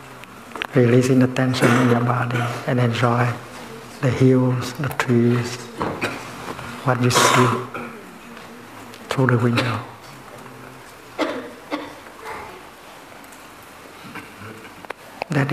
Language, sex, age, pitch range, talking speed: English, male, 60-79, 120-135 Hz, 75 wpm